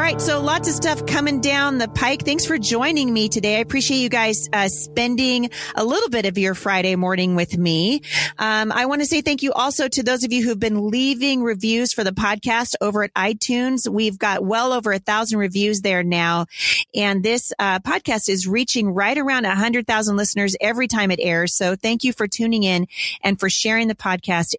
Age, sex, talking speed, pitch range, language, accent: 30-49, female, 210 wpm, 190-250 Hz, English, American